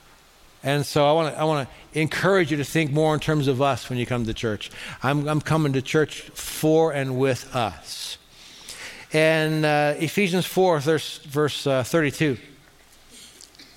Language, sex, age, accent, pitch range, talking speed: English, male, 60-79, American, 130-180 Hz, 160 wpm